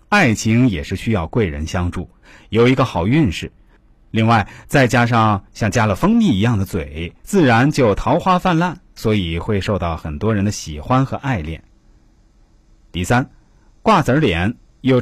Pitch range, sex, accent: 100-140 Hz, male, native